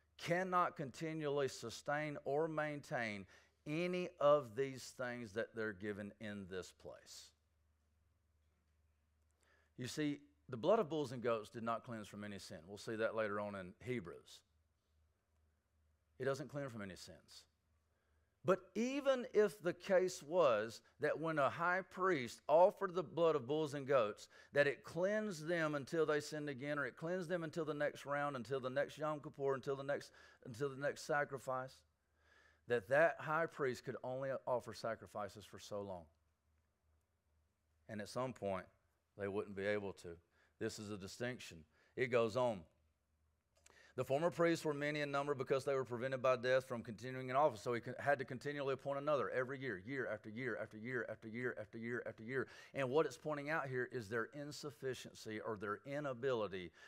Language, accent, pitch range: English, American, 95-145 Hz